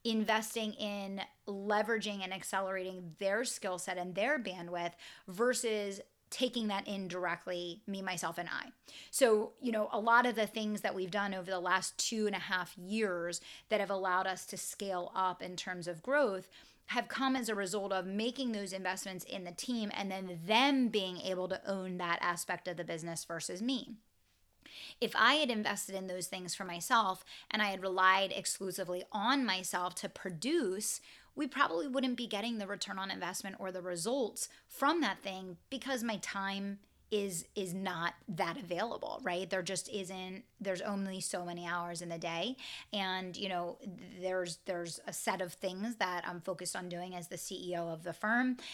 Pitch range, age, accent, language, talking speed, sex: 185-225 Hz, 30-49, American, English, 185 wpm, female